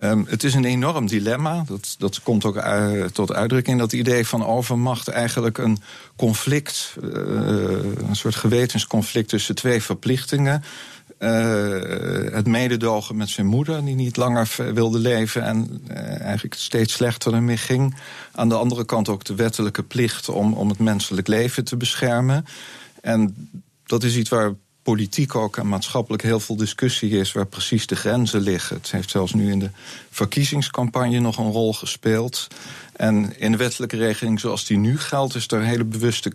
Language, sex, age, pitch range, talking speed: Dutch, male, 50-69, 105-125 Hz, 170 wpm